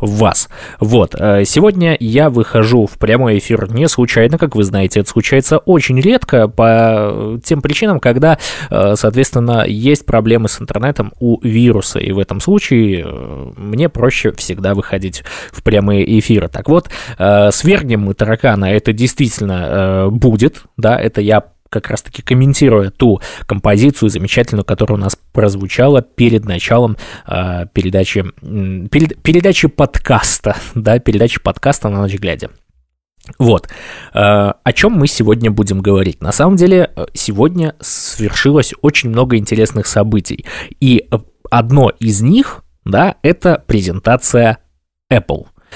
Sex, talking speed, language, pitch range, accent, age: male, 130 wpm, Russian, 100-140 Hz, native, 20-39